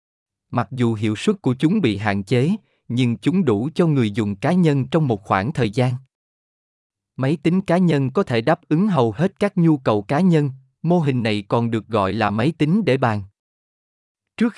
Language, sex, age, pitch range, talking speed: Vietnamese, male, 20-39, 110-155 Hz, 200 wpm